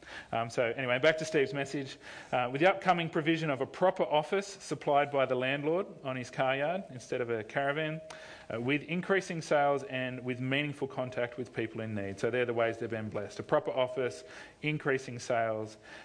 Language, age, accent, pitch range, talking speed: English, 40-59, Australian, 120-150 Hz, 195 wpm